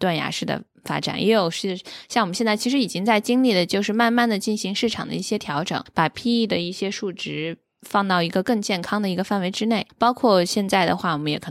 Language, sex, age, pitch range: Chinese, female, 10-29, 165-215 Hz